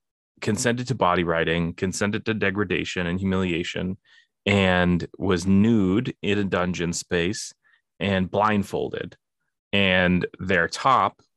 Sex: male